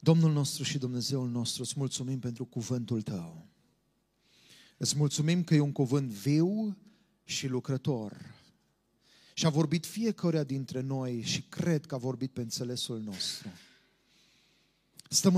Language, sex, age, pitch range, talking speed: Romanian, male, 30-49, 135-170 Hz, 130 wpm